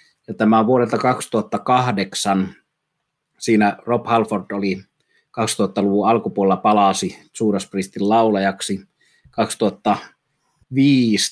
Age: 30-49